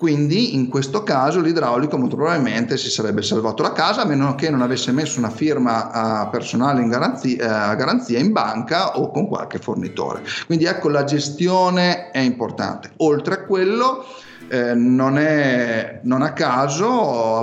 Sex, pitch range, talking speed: male, 120-180 Hz, 165 wpm